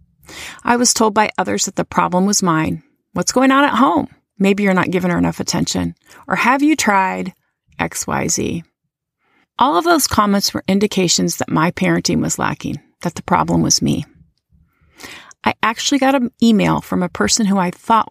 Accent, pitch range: American, 180-230 Hz